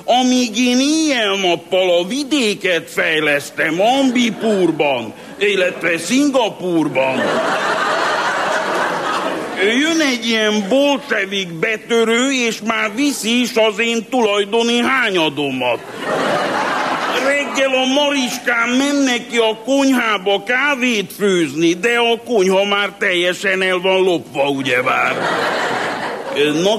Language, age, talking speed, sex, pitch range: Hungarian, 50-69, 95 wpm, male, 170-235 Hz